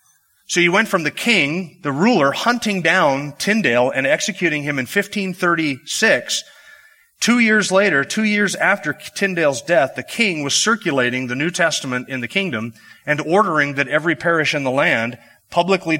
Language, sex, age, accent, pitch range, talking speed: English, male, 30-49, American, 130-180 Hz, 160 wpm